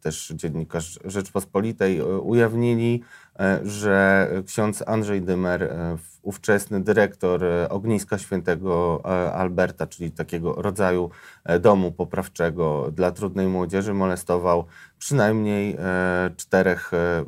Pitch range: 90-110 Hz